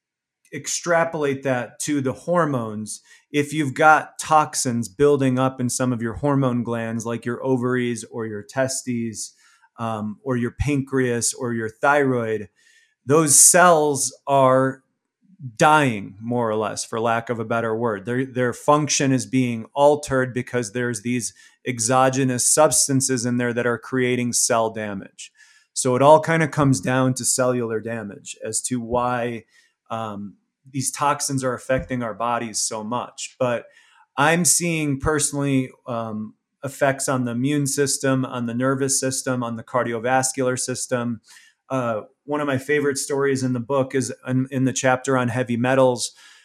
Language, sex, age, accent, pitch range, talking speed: English, male, 30-49, American, 120-140 Hz, 150 wpm